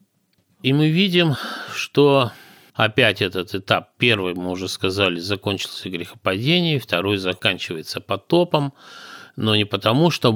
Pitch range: 95-130 Hz